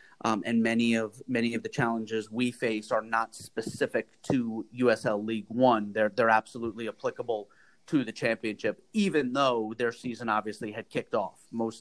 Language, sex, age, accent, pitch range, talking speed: English, male, 30-49, American, 110-125 Hz, 170 wpm